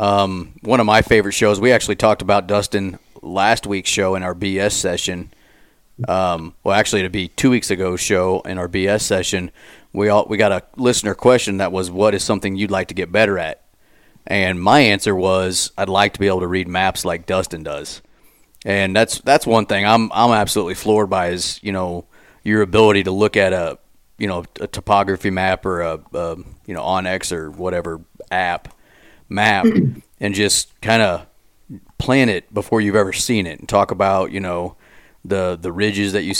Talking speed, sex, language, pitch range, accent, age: 195 wpm, male, English, 95-105 Hz, American, 30-49